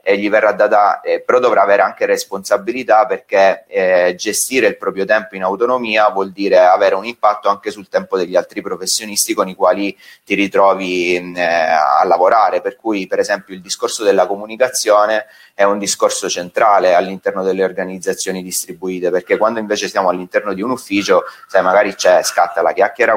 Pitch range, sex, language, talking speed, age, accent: 95-120 Hz, male, Italian, 170 wpm, 30-49, native